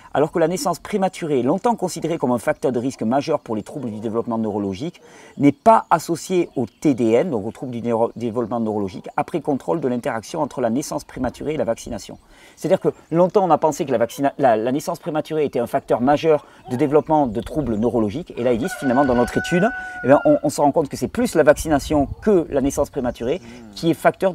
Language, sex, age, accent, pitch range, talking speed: French, male, 40-59, French, 125-170 Hz, 225 wpm